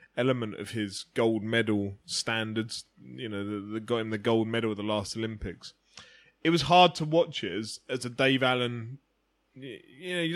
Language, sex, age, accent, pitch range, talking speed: English, male, 20-39, British, 115-150 Hz, 190 wpm